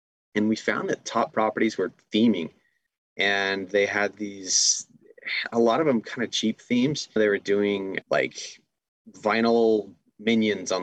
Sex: male